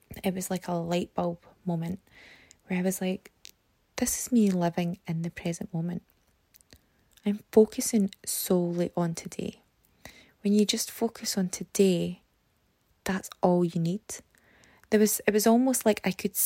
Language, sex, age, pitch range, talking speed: English, female, 20-39, 170-205 Hz, 155 wpm